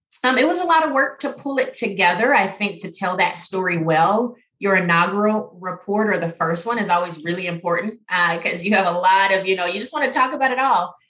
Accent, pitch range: American, 170-215 Hz